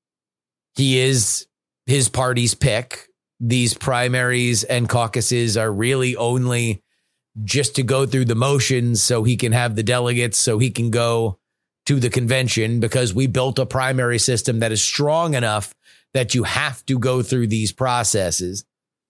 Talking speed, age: 155 wpm, 30-49